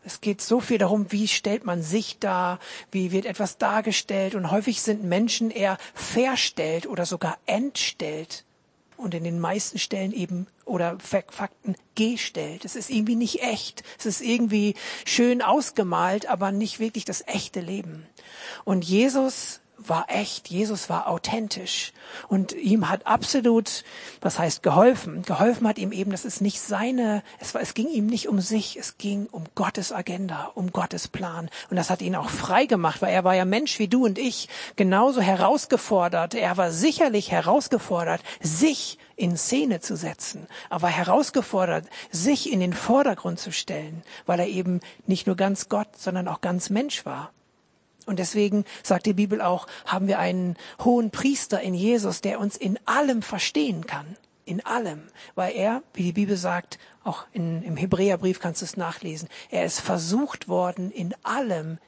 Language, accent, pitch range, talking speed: German, German, 180-225 Hz, 170 wpm